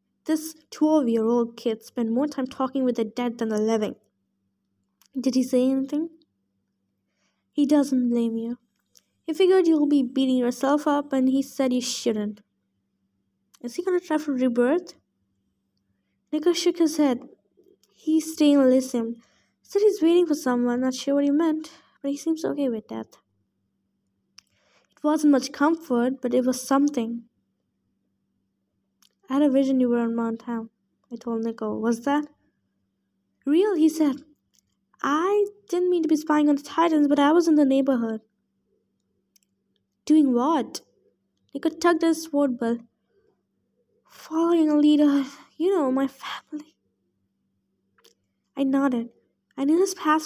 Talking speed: 150 wpm